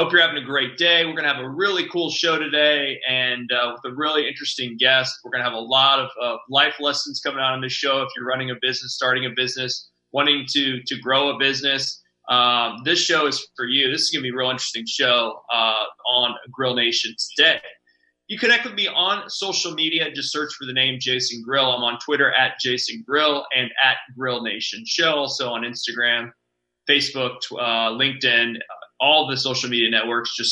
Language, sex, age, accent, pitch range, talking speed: English, male, 20-39, American, 125-150 Hz, 215 wpm